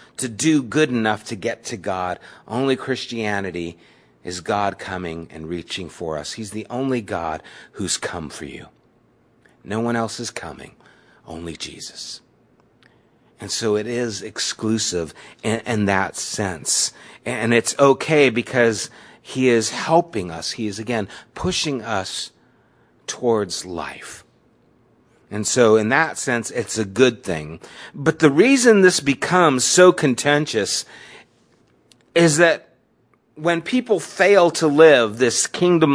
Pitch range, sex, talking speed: 110-170 Hz, male, 135 wpm